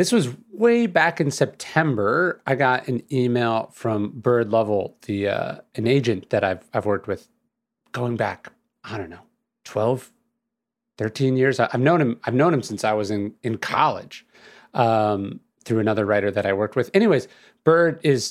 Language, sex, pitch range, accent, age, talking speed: English, male, 110-155 Hz, American, 30-49, 175 wpm